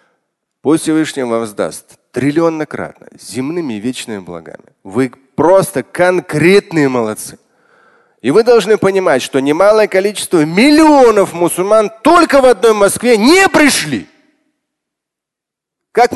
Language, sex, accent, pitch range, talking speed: Russian, male, native, 140-215 Hz, 110 wpm